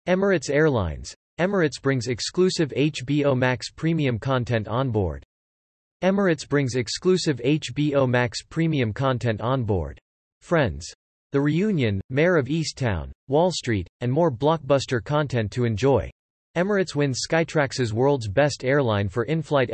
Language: English